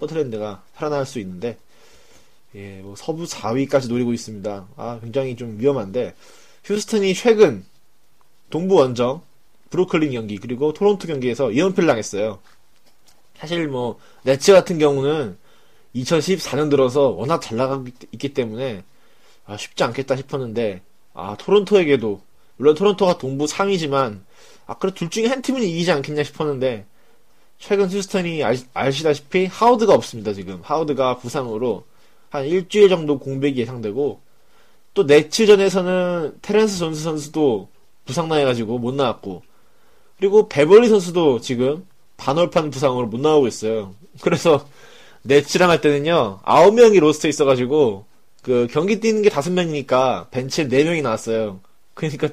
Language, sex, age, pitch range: Korean, male, 20-39, 125-180 Hz